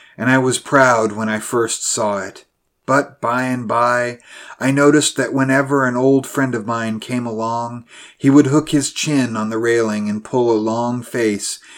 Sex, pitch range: male, 105-130 Hz